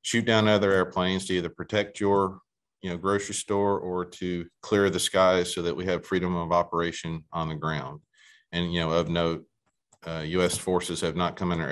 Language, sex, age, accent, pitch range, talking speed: English, male, 40-59, American, 80-95 Hz, 205 wpm